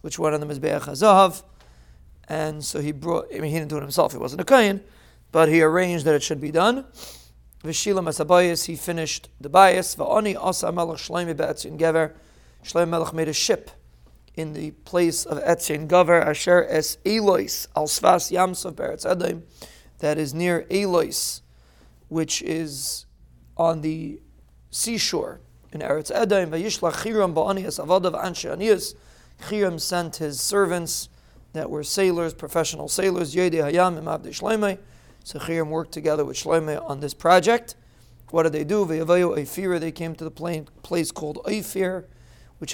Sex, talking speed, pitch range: male, 155 wpm, 150-175 Hz